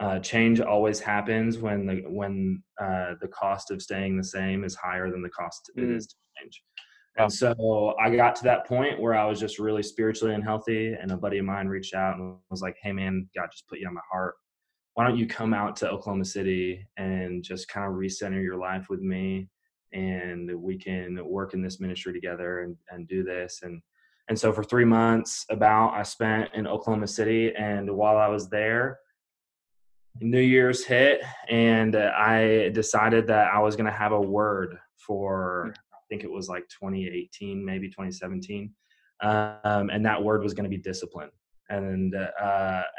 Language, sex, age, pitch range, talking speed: English, male, 20-39, 95-110 Hz, 195 wpm